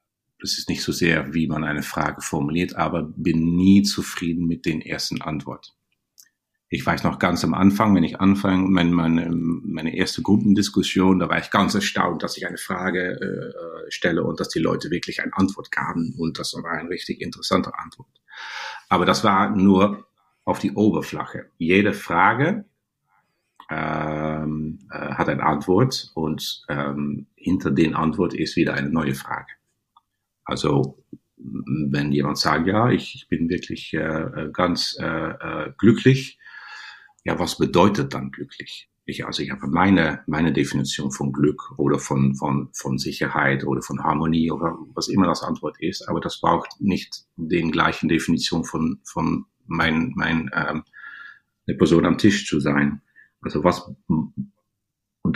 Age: 50-69